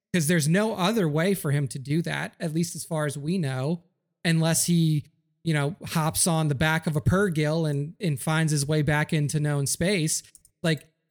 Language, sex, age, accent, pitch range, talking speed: English, male, 30-49, American, 155-185 Hz, 200 wpm